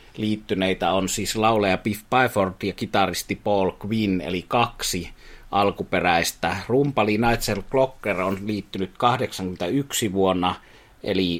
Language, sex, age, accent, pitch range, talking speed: Finnish, male, 30-49, native, 95-110 Hz, 110 wpm